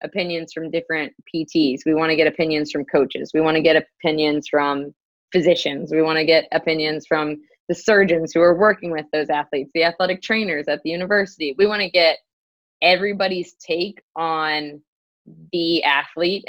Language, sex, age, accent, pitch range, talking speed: English, female, 20-39, American, 150-170 Hz, 170 wpm